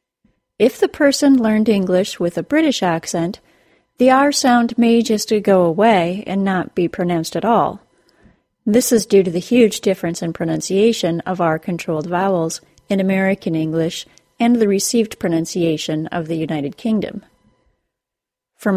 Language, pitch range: English, 175-230 Hz